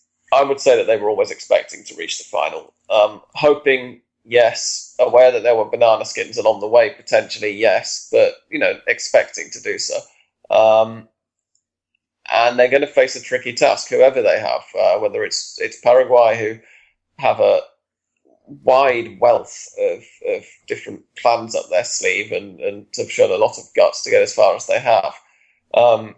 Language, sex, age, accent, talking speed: English, male, 20-39, British, 180 wpm